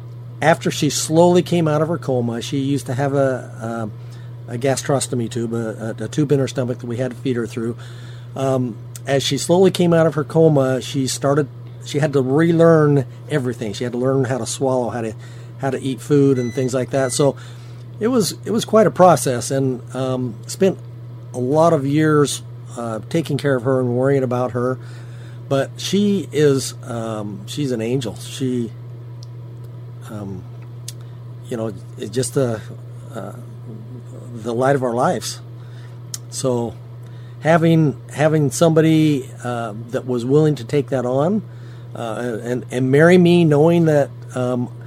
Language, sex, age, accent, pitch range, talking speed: English, male, 40-59, American, 120-140 Hz, 170 wpm